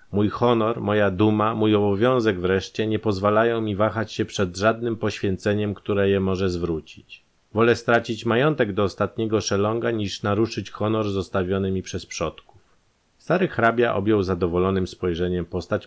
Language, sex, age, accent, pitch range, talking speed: Polish, male, 30-49, native, 90-110 Hz, 145 wpm